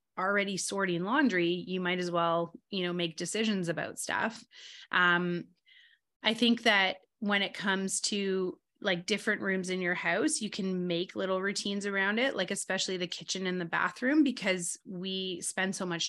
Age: 20-39